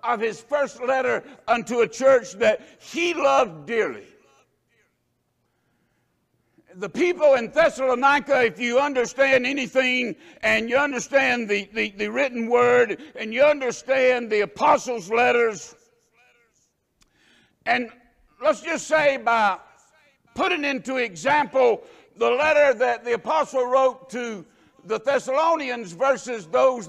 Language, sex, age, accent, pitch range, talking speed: English, male, 60-79, American, 225-275 Hz, 115 wpm